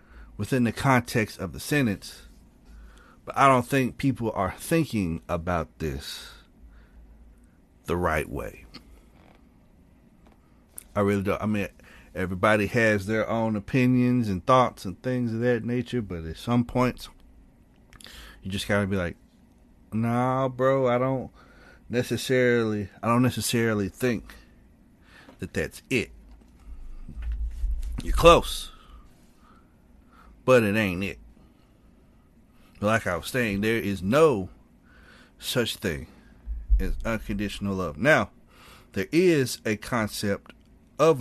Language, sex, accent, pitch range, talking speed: English, male, American, 90-120 Hz, 115 wpm